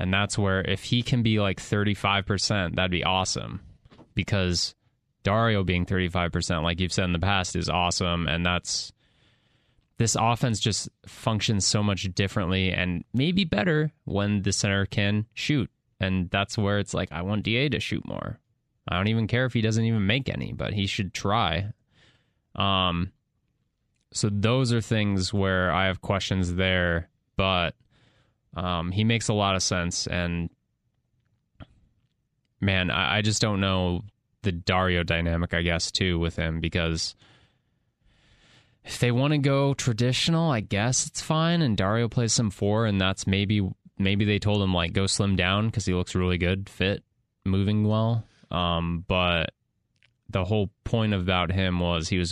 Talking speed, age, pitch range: 165 wpm, 20-39, 90-115 Hz